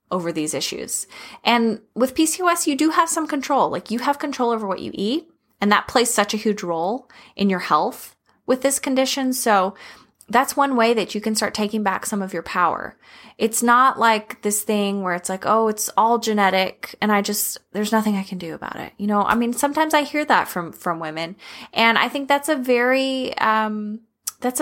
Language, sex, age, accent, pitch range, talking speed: English, female, 20-39, American, 200-255 Hz, 210 wpm